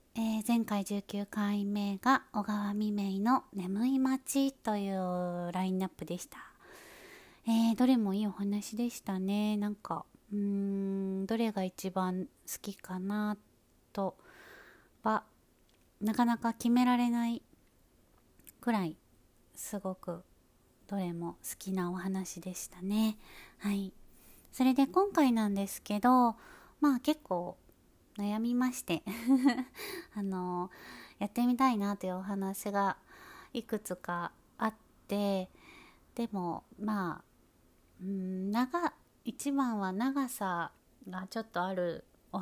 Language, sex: Japanese, female